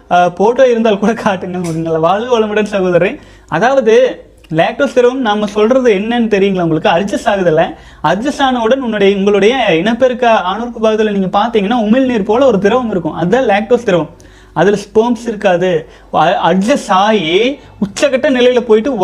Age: 30-49